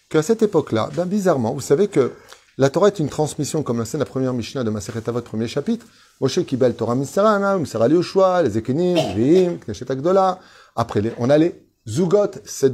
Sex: male